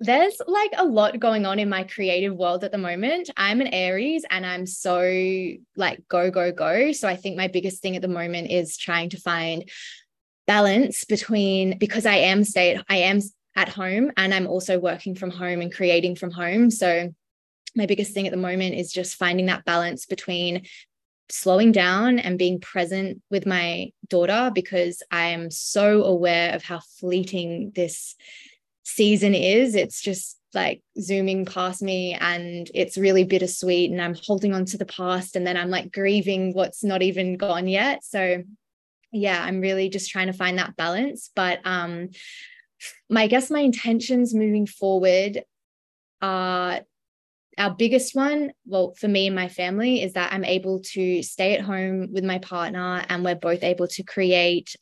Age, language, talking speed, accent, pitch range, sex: 20-39, English, 175 wpm, Australian, 180-205 Hz, female